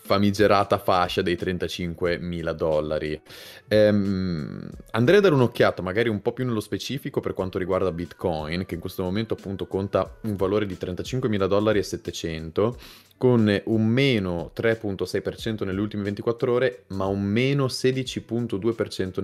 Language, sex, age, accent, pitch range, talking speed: Italian, male, 20-39, native, 90-105 Hz, 140 wpm